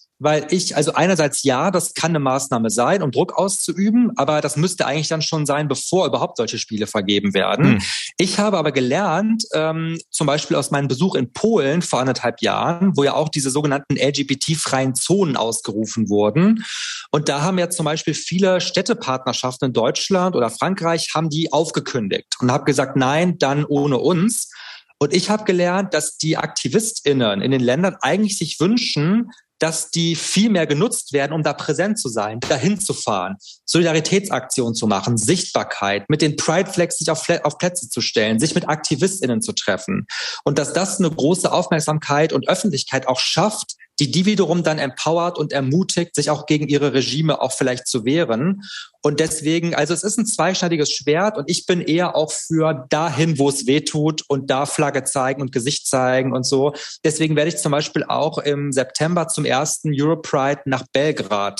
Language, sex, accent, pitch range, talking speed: German, male, German, 135-175 Hz, 180 wpm